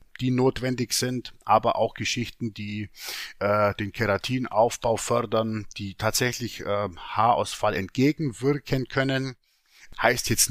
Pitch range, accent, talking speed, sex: 115-140 Hz, German, 110 wpm, male